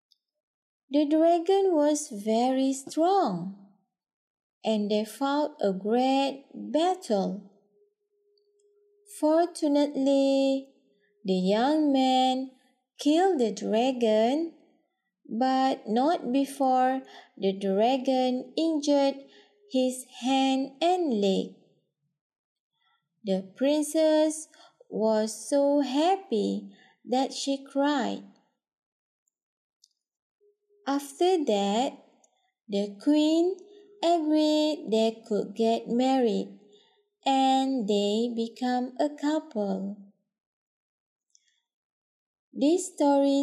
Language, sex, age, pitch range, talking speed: English, female, 20-39, 220-290 Hz, 70 wpm